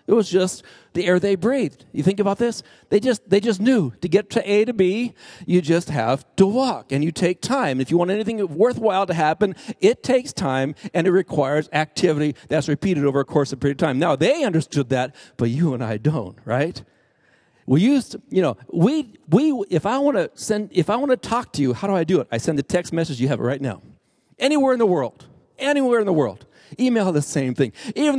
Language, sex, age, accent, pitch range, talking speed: English, male, 50-69, American, 150-225 Hz, 240 wpm